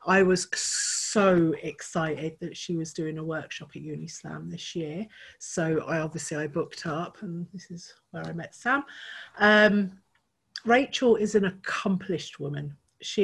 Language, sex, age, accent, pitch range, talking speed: English, female, 40-59, British, 160-200 Hz, 155 wpm